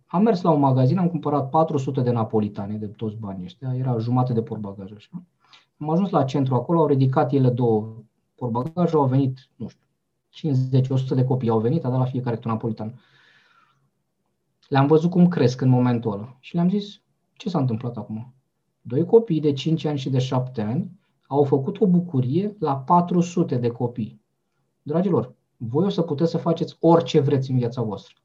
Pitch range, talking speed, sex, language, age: 120-155 Hz, 185 wpm, male, Romanian, 20-39